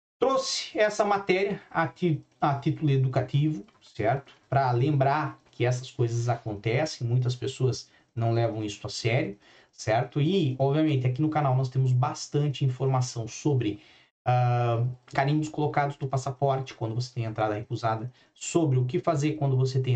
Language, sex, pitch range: Portuguese, male, 115-150 Hz